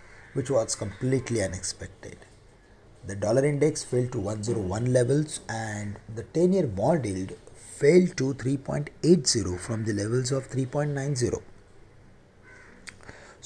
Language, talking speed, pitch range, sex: English, 105 wpm, 105-140 Hz, male